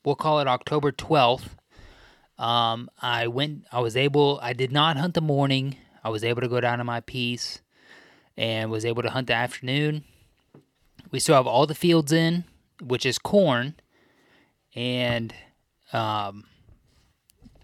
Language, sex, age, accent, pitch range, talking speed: English, male, 20-39, American, 120-140 Hz, 155 wpm